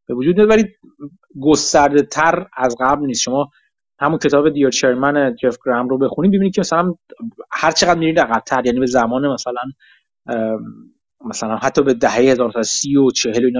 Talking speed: 160 wpm